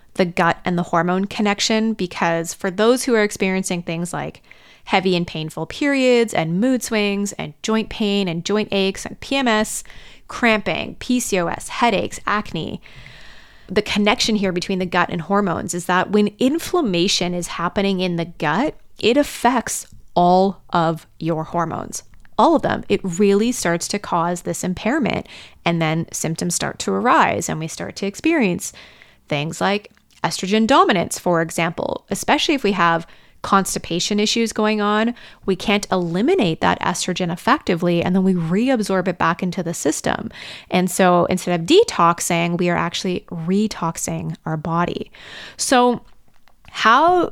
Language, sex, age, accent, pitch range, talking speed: English, female, 30-49, American, 175-215 Hz, 150 wpm